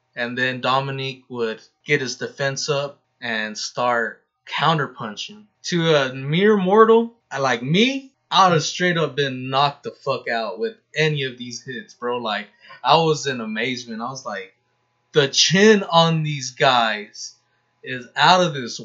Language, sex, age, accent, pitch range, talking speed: English, male, 20-39, American, 130-175 Hz, 160 wpm